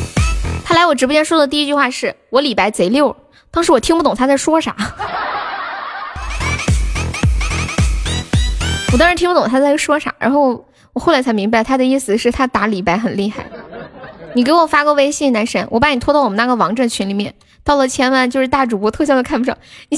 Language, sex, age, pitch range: Chinese, female, 10-29, 245-300 Hz